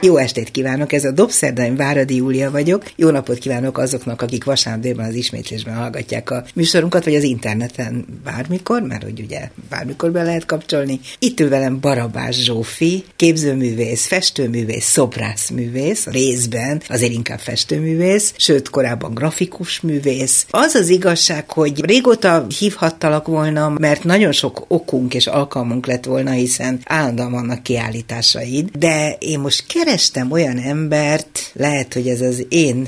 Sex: female